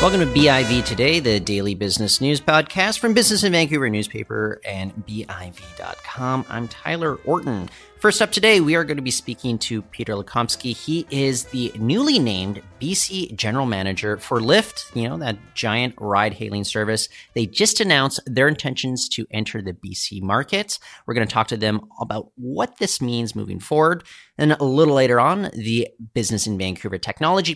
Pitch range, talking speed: 105-145 Hz, 175 wpm